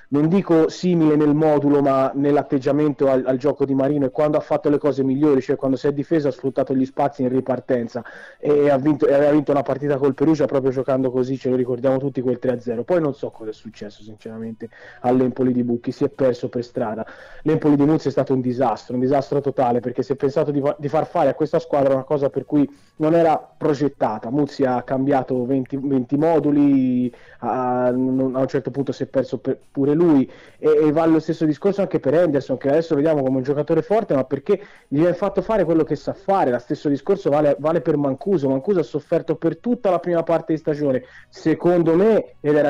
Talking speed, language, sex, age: 215 wpm, Italian, male, 20-39